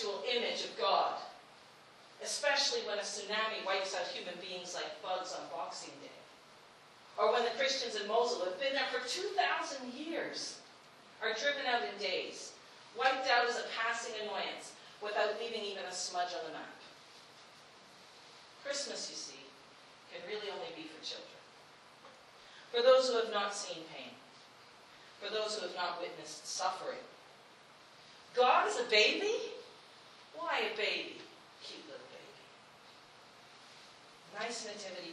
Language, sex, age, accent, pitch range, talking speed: English, female, 40-59, American, 210-325 Hz, 140 wpm